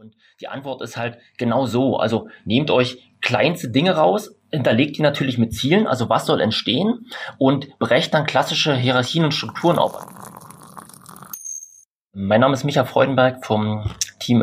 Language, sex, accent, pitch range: German, male, German, 105-130 Hz